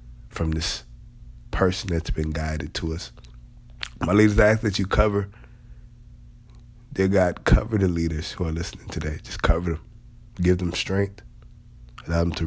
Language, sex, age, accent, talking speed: English, male, 20-39, American, 160 wpm